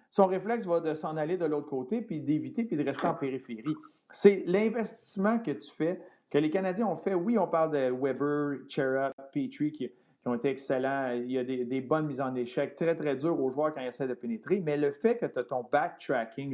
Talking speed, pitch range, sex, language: 235 wpm, 135-185 Hz, male, French